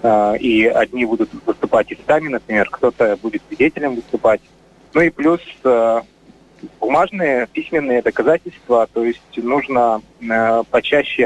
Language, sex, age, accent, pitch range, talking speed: Russian, male, 20-39, native, 115-135 Hz, 110 wpm